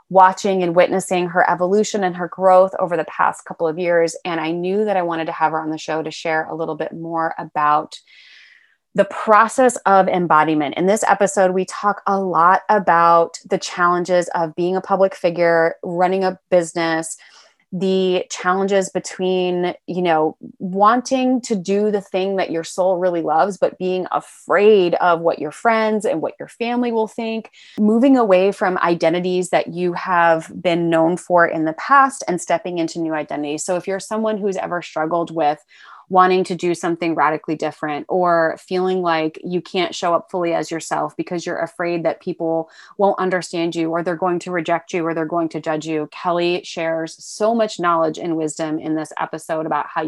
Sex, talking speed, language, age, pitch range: female, 190 wpm, English, 20-39, 165-195 Hz